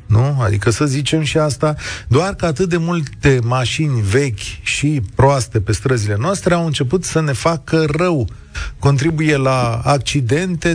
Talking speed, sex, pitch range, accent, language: 150 wpm, male, 115-160 Hz, native, Romanian